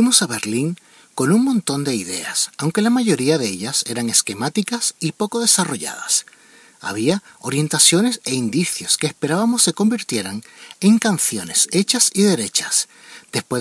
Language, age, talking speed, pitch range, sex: Spanish, 40-59, 140 wpm, 150-210 Hz, male